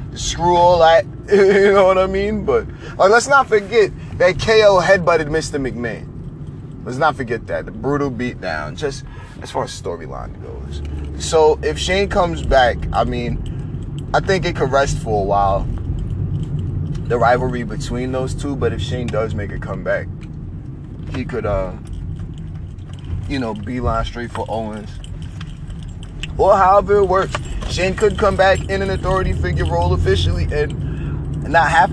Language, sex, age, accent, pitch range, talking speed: English, male, 30-49, American, 100-155 Hz, 160 wpm